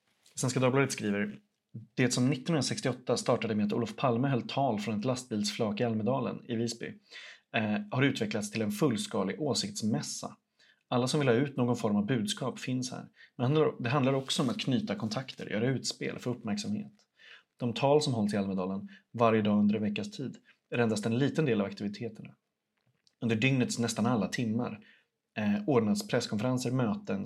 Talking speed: 170 wpm